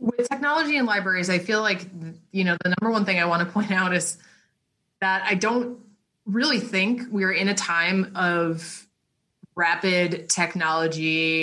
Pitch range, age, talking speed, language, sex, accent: 165-195 Hz, 20-39, 165 wpm, English, female, American